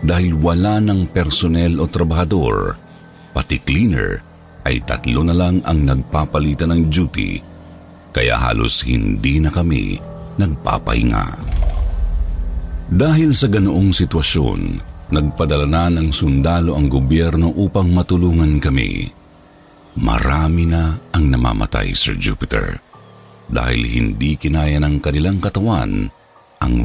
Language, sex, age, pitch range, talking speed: Filipino, male, 50-69, 75-100 Hz, 105 wpm